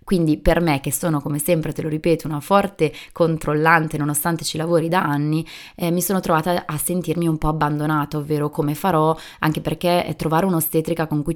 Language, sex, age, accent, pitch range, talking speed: Italian, female, 20-39, native, 150-170 Hz, 190 wpm